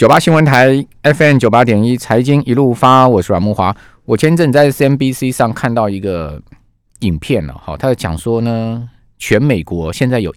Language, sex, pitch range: Chinese, male, 95-135 Hz